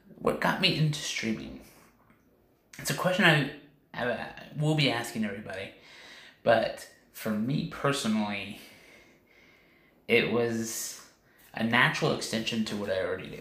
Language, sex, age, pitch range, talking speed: English, male, 20-39, 115-140 Hz, 130 wpm